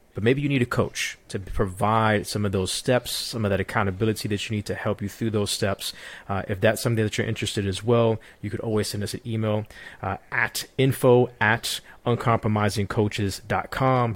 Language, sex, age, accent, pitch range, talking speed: English, male, 30-49, American, 100-115 Hz, 200 wpm